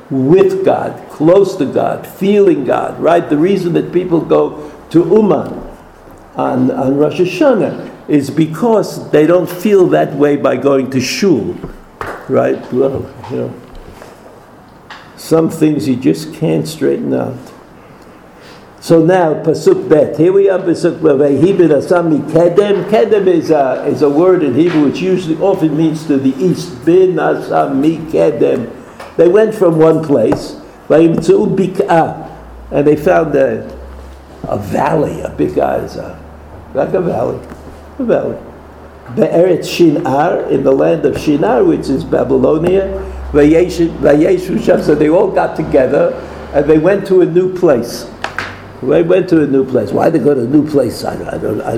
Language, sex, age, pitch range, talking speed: English, male, 60-79, 150-195 Hz, 140 wpm